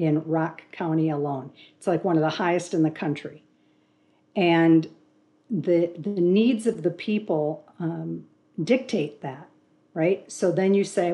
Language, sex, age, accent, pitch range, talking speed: English, female, 50-69, American, 160-195 Hz, 150 wpm